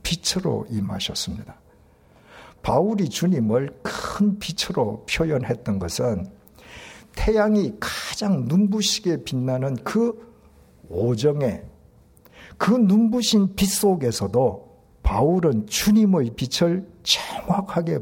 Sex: male